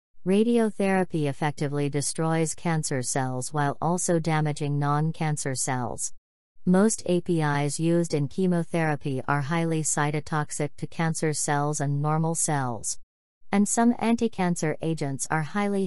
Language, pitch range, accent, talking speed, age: English, 140-170 Hz, American, 115 wpm, 40-59